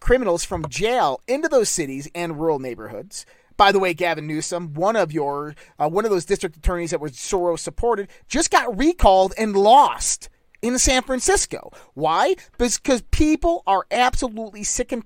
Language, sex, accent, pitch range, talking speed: English, male, American, 175-260 Hz, 165 wpm